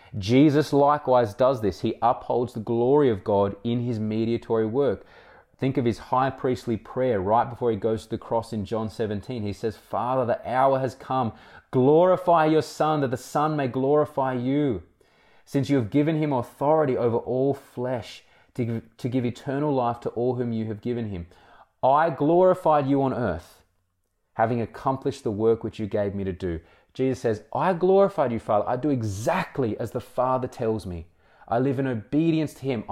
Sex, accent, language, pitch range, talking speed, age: male, Australian, English, 110-135 Hz, 185 wpm, 20-39